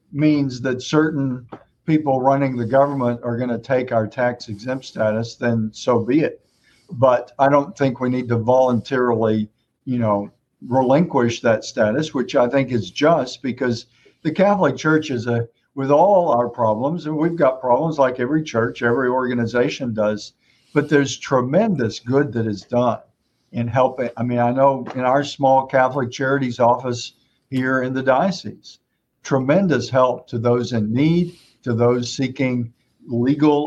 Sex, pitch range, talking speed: male, 120-140 Hz, 160 wpm